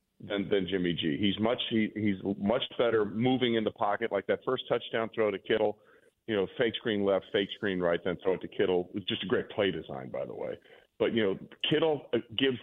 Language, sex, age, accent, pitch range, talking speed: English, male, 40-59, American, 105-130 Hz, 235 wpm